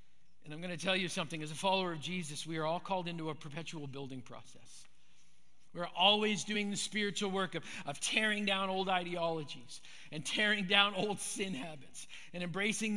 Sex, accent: male, American